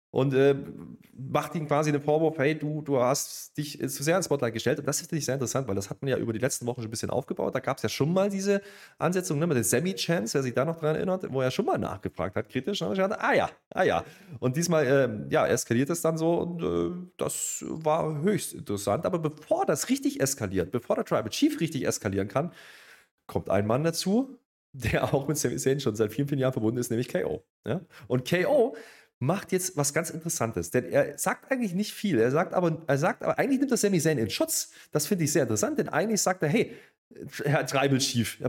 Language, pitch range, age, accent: German, 125-180 Hz, 30-49, German